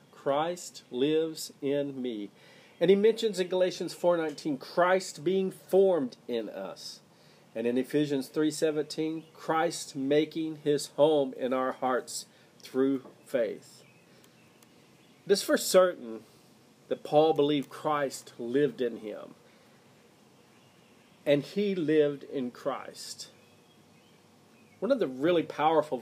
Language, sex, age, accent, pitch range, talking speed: English, male, 40-59, American, 130-165 Hz, 110 wpm